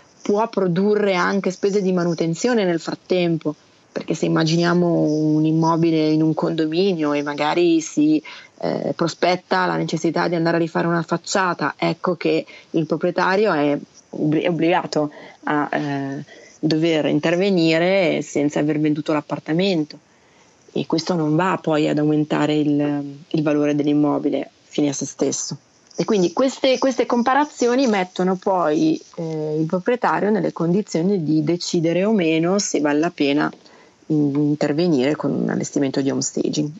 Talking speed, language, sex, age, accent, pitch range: 145 wpm, Italian, female, 30-49, native, 150-180 Hz